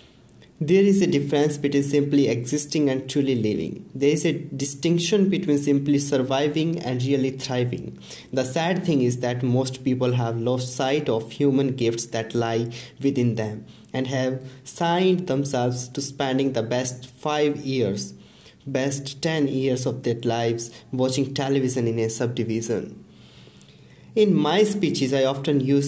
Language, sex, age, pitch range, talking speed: English, male, 20-39, 120-145 Hz, 150 wpm